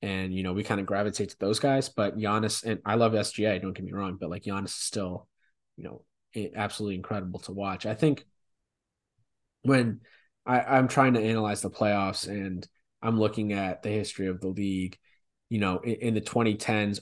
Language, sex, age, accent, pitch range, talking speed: English, male, 20-39, American, 100-115 Hz, 195 wpm